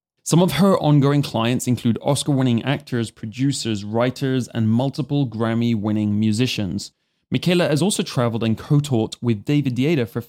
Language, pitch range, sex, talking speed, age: English, 110-145 Hz, male, 140 wpm, 20-39